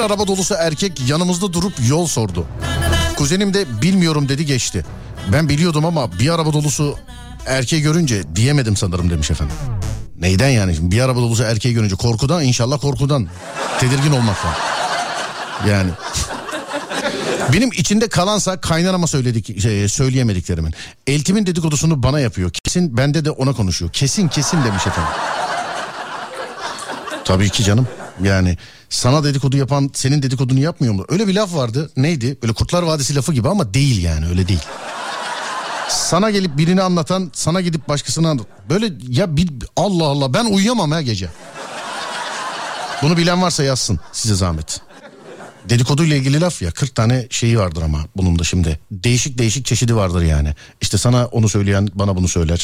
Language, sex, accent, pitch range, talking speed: Turkish, male, native, 100-155 Hz, 150 wpm